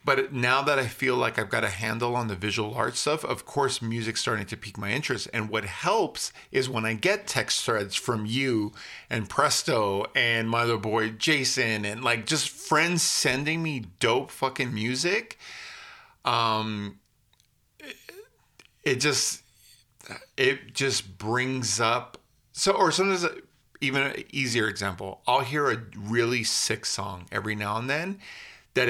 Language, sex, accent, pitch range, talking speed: English, male, American, 110-140 Hz, 155 wpm